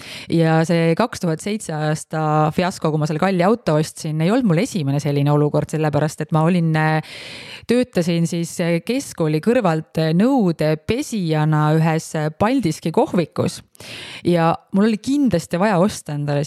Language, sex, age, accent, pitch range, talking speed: English, female, 30-49, Finnish, 155-200 Hz, 130 wpm